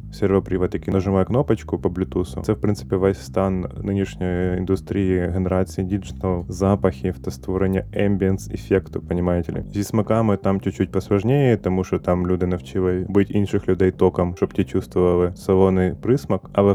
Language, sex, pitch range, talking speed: Ukrainian, male, 90-100 Hz, 145 wpm